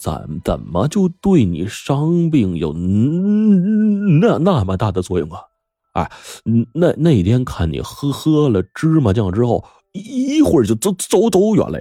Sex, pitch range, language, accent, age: male, 90-150 Hz, Chinese, native, 30-49